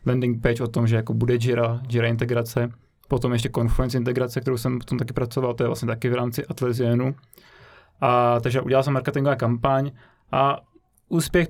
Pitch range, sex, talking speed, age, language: 120-135 Hz, male, 175 wpm, 20-39, Czech